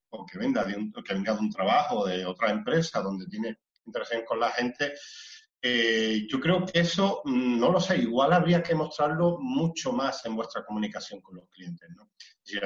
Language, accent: Spanish, Spanish